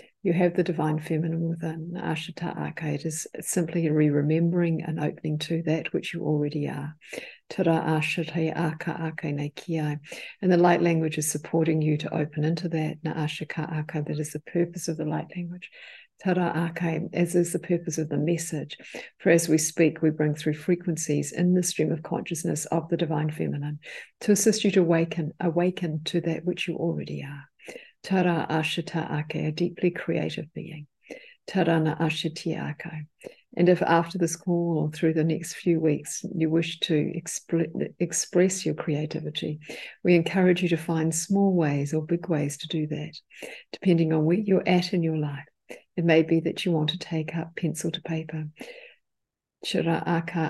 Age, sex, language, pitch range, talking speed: 50-69, female, English, 155-175 Hz, 165 wpm